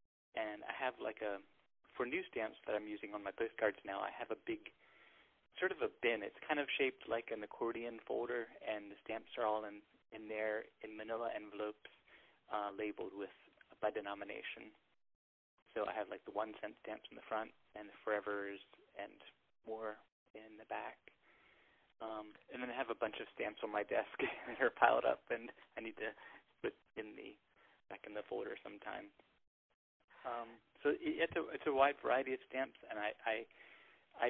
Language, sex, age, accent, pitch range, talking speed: English, male, 30-49, American, 105-125 Hz, 185 wpm